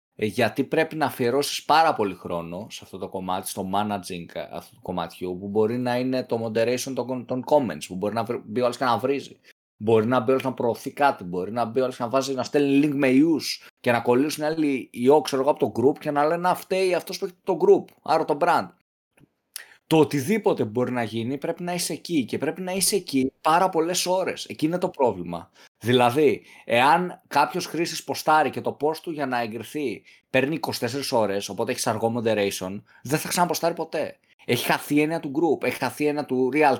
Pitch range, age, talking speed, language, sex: 110-150 Hz, 20-39, 205 wpm, Greek, male